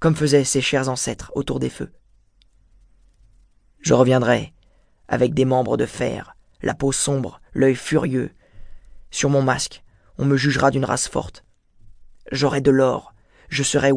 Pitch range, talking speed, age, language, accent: 100-135 Hz, 145 wpm, 20-39, French, French